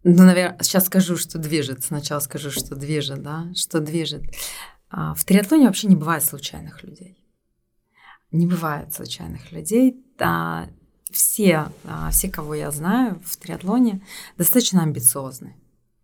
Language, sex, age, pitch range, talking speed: Russian, female, 20-39, 150-185 Hz, 125 wpm